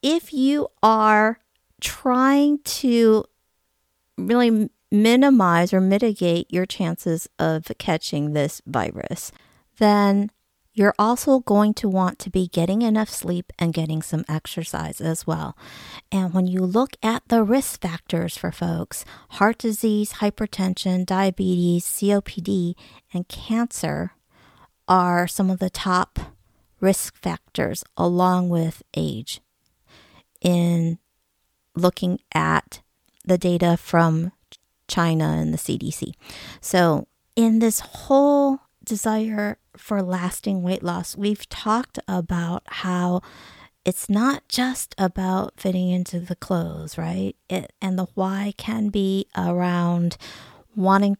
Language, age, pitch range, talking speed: English, 50-69, 170-210 Hz, 115 wpm